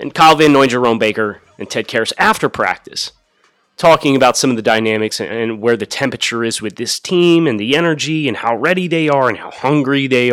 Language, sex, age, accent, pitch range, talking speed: English, male, 30-49, American, 115-165 Hz, 210 wpm